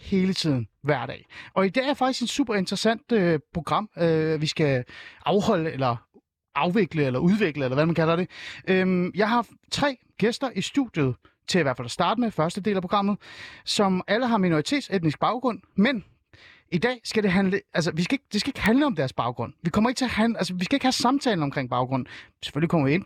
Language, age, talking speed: Danish, 30-49, 220 wpm